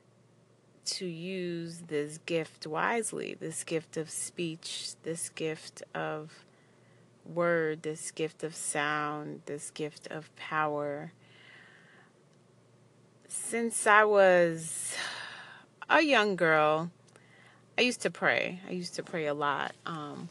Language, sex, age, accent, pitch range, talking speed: English, female, 30-49, American, 150-180 Hz, 110 wpm